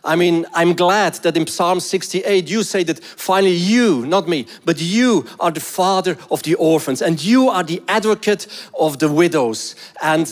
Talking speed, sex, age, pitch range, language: 185 wpm, male, 40-59, 170-210 Hz, English